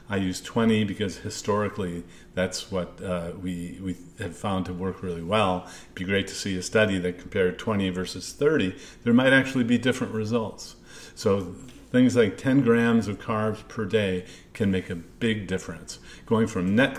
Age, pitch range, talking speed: 40-59, 90-105 Hz, 180 wpm